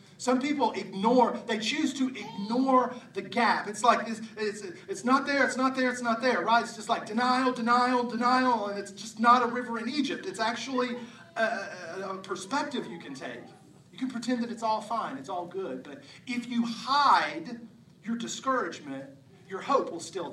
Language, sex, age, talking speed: English, male, 40-59, 190 wpm